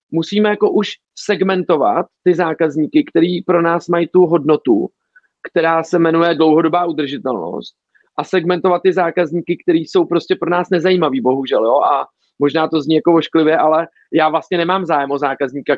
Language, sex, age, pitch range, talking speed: Czech, male, 40-59, 155-180 Hz, 160 wpm